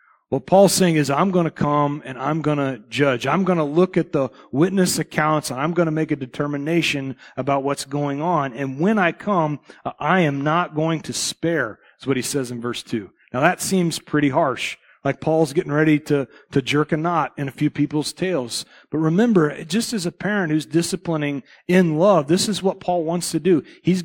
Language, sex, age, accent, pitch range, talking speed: English, male, 40-59, American, 150-195 Hz, 215 wpm